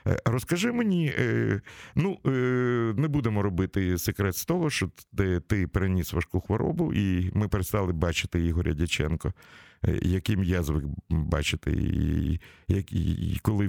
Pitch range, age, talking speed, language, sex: 90-115 Hz, 50-69, 115 wpm, Russian, male